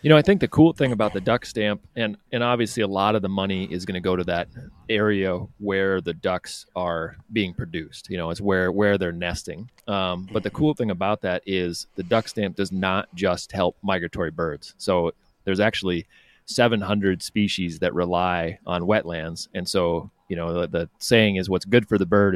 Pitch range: 90-105 Hz